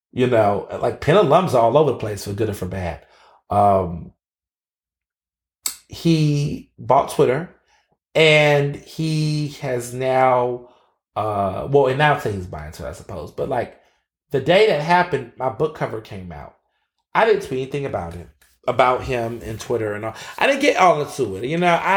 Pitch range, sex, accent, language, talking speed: 110-155 Hz, male, American, English, 180 wpm